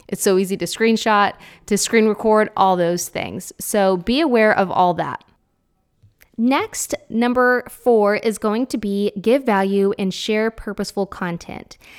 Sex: female